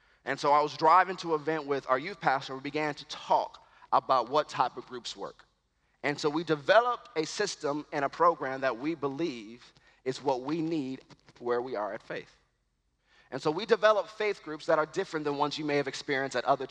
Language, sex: English, male